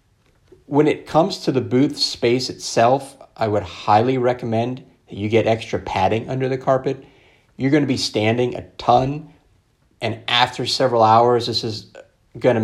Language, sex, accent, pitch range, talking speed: English, male, American, 105-130 Hz, 155 wpm